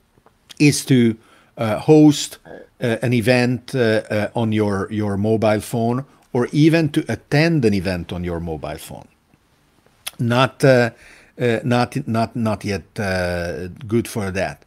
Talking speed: 145 wpm